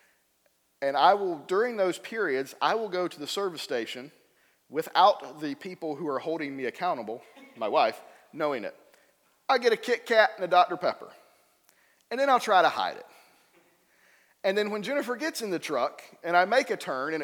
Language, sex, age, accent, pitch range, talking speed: English, male, 40-59, American, 160-245 Hz, 190 wpm